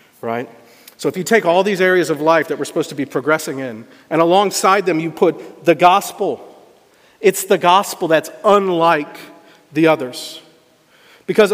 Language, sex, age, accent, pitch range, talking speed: English, male, 50-69, American, 165-220 Hz, 165 wpm